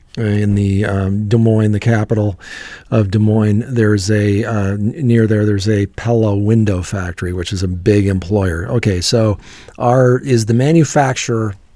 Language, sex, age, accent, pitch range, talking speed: English, male, 40-59, American, 105-120 Hz, 160 wpm